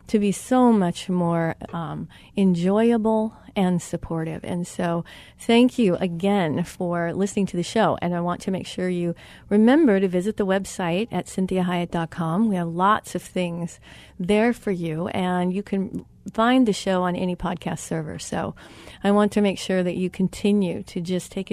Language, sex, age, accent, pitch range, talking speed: English, female, 40-59, American, 180-225 Hz, 175 wpm